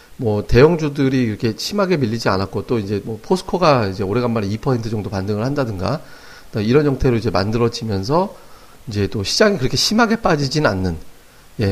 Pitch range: 110-155 Hz